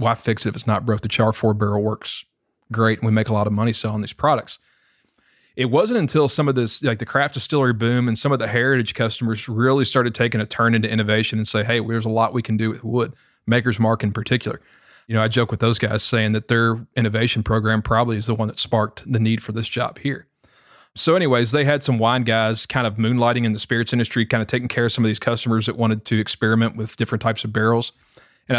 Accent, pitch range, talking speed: American, 110-120 Hz, 250 wpm